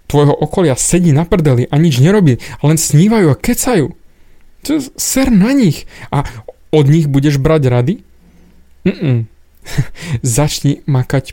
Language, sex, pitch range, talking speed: Slovak, male, 125-155 Hz, 125 wpm